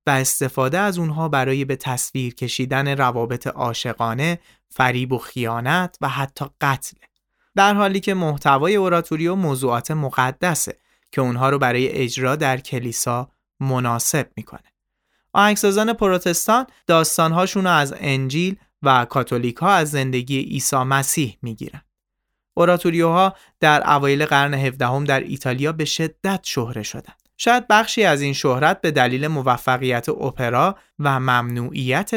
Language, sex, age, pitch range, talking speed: Persian, male, 30-49, 125-165 Hz, 125 wpm